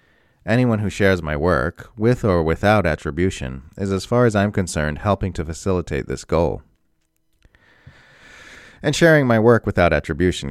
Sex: male